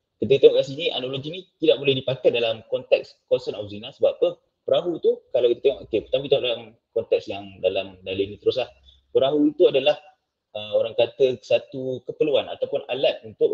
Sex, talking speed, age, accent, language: male, 185 wpm, 20-39, Indonesian, English